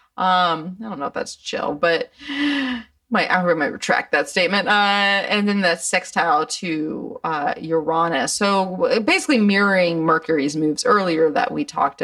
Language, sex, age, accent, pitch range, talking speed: English, female, 30-49, American, 185-250 Hz, 155 wpm